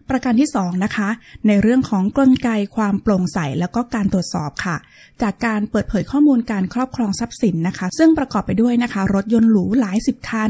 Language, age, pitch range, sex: Thai, 20-39, 195-245 Hz, female